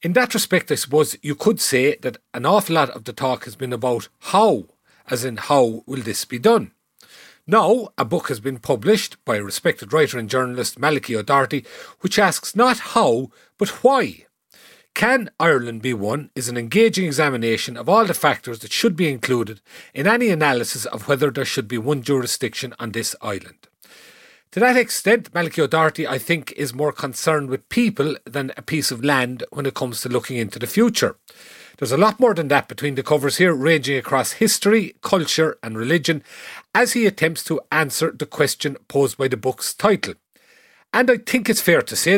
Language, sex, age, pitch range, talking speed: English, male, 40-59, 130-185 Hz, 190 wpm